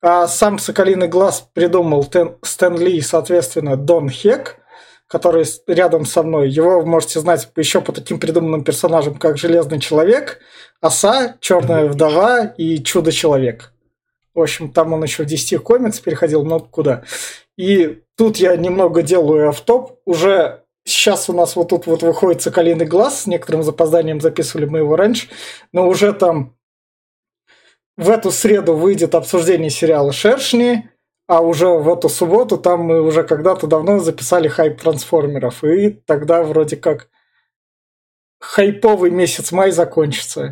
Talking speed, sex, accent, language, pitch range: 145 wpm, male, native, Russian, 160-195 Hz